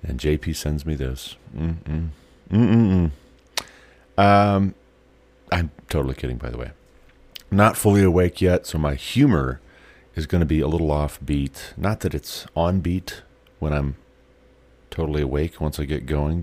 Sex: male